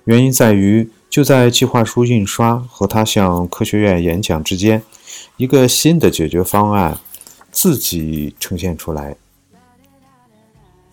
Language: Chinese